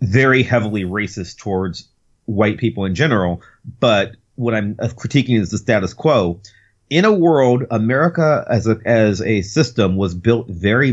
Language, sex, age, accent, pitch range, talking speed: English, male, 30-49, American, 100-125 Hz, 155 wpm